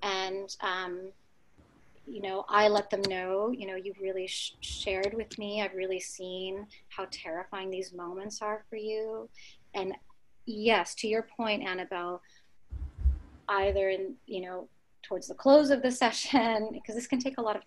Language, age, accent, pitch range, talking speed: English, 30-49, American, 185-225 Hz, 165 wpm